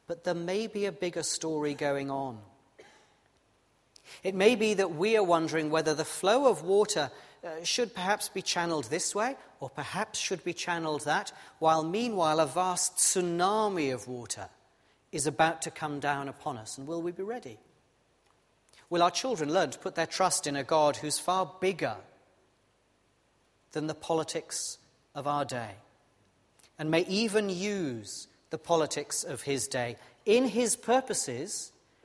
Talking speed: 160 wpm